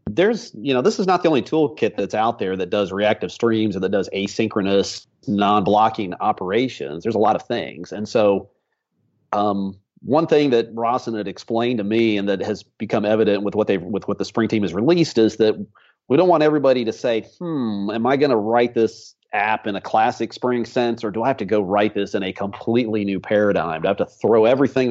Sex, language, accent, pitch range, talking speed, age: male, English, American, 100-115 Hz, 225 wpm, 40-59